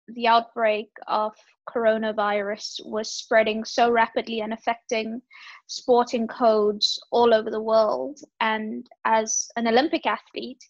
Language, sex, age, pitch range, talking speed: English, female, 20-39, 220-255 Hz, 120 wpm